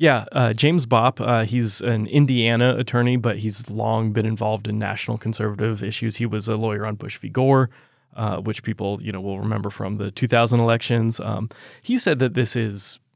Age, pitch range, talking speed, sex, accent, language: 20-39, 110-130 Hz, 195 wpm, male, American, English